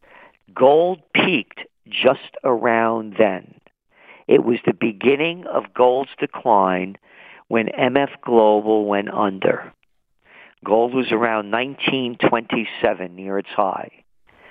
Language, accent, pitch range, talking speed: English, American, 110-130 Hz, 100 wpm